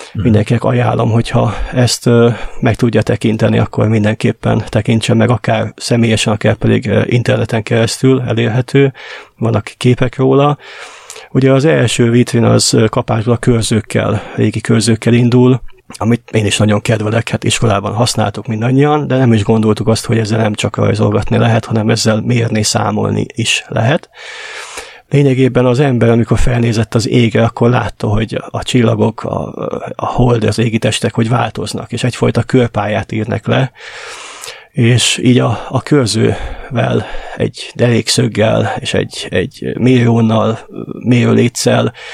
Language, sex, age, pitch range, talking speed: Hungarian, male, 30-49, 110-125 Hz, 135 wpm